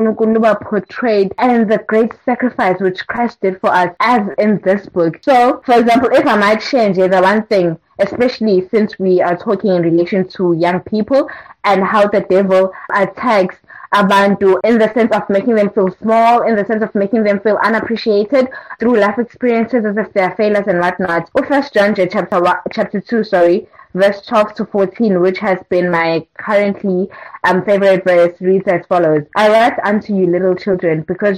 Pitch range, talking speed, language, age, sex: 185-225 Hz, 185 wpm, English, 20-39, female